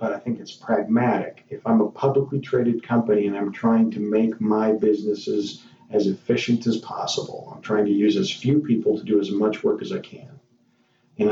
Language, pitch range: English, 110-130 Hz